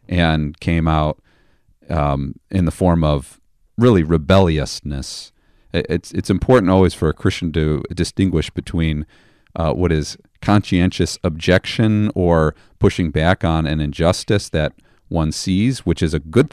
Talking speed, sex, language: 140 wpm, male, English